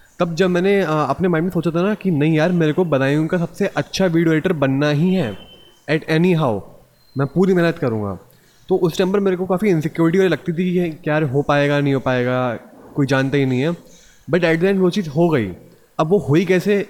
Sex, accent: male, native